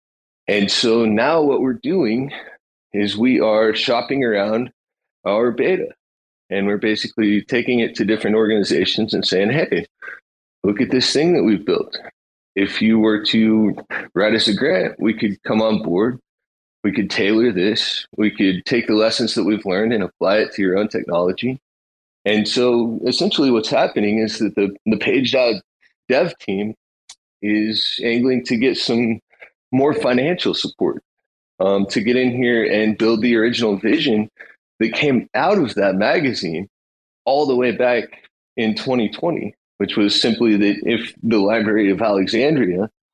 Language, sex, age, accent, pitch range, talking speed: English, male, 30-49, American, 100-115 Hz, 155 wpm